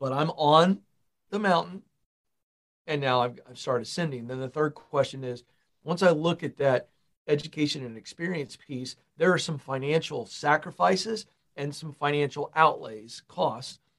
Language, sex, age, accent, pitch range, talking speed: English, male, 50-69, American, 130-155 Hz, 150 wpm